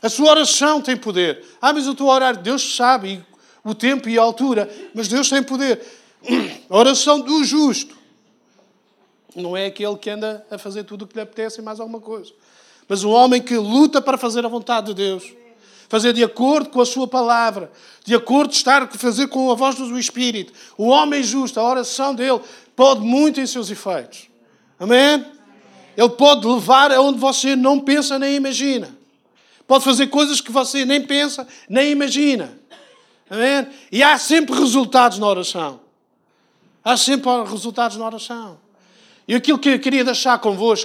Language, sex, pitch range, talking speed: Portuguese, male, 220-275 Hz, 175 wpm